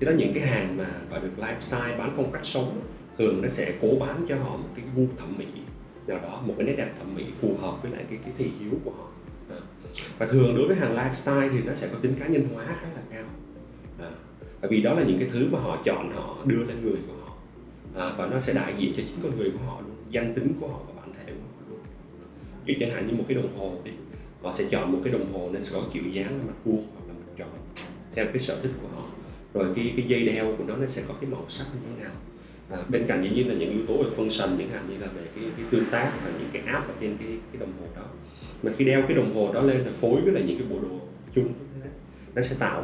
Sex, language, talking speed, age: male, Vietnamese, 275 wpm, 20-39